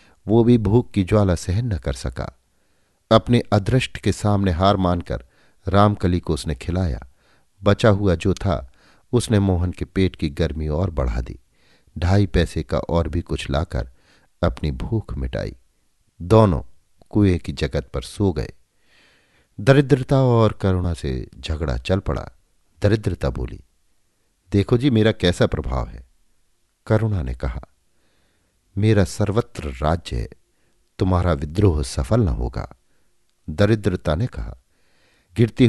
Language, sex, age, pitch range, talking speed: Hindi, male, 50-69, 80-105 Hz, 135 wpm